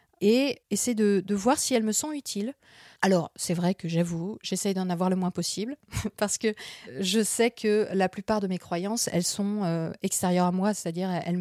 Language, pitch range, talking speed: French, 180-225 Hz, 200 wpm